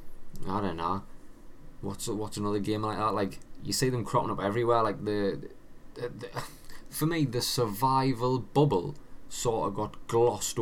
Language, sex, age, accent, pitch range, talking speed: English, male, 20-39, British, 95-110 Hz, 165 wpm